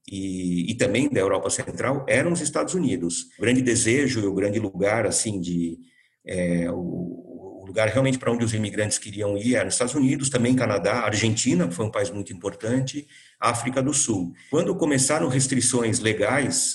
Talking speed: 175 wpm